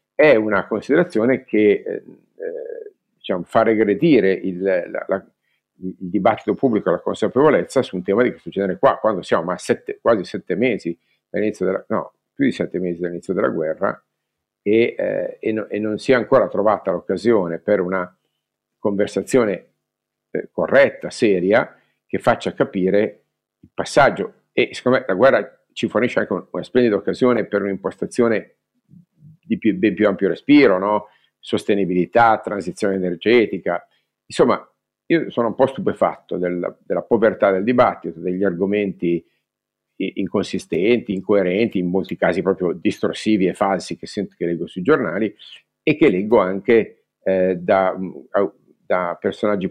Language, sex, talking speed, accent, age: Italian, male, 145 wpm, native, 50-69